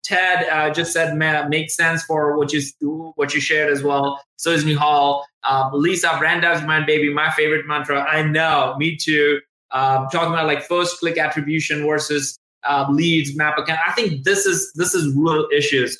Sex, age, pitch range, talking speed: male, 20-39, 140-165 Hz, 195 wpm